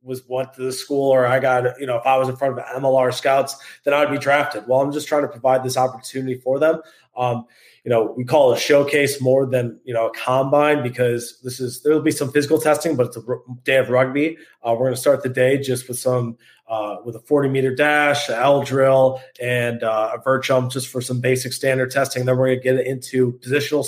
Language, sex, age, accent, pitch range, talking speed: English, male, 20-39, American, 125-135 Hz, 245 wpm